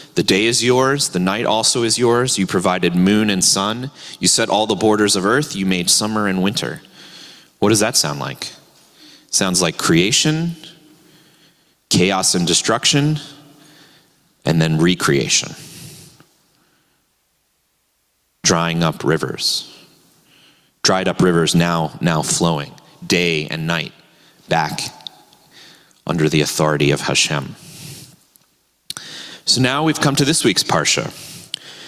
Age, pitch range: 30-49, 95-150 Hz